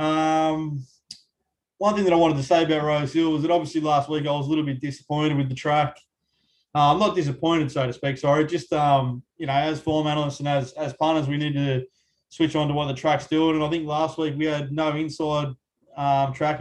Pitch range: 140-160 Hz